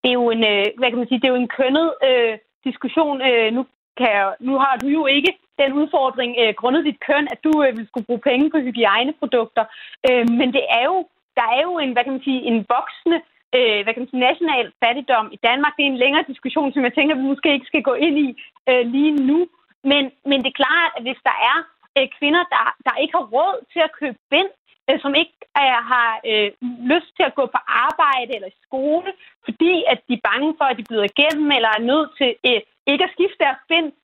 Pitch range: 245-310 Hz